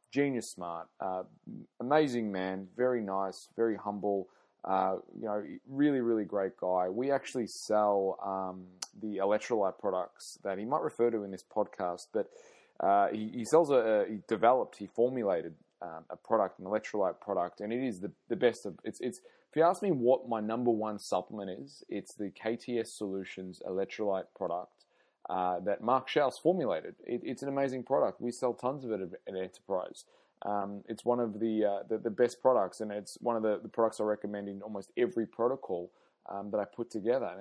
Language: Italian